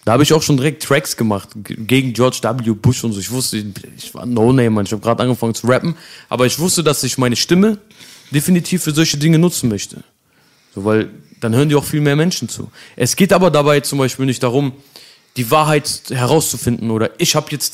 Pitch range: 125-155 Hz